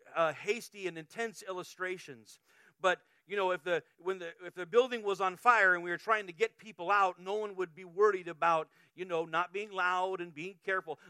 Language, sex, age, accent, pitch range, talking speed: English, male, 40-59, American, 165-210 Hz, 215 wpm